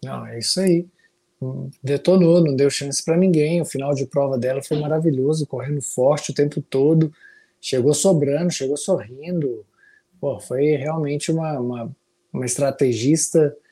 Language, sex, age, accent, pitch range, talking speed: Portuguese, male, 20-39, Brazilian, 135-170 Hz, 140 wpm